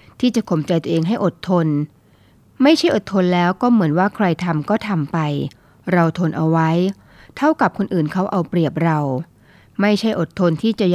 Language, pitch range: Thai, 160-210 Hz